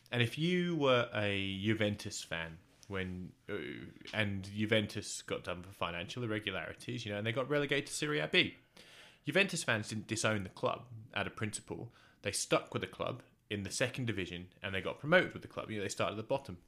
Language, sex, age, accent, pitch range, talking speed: English, male, 20-39, British, 100-125 Hz, 200 wpm